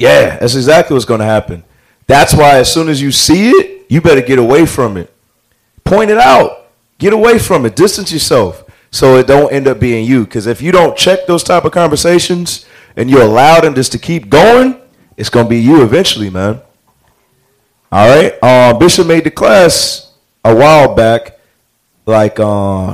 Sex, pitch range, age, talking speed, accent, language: male, 115-170 Hz, 30-49, 190 wpm, American, English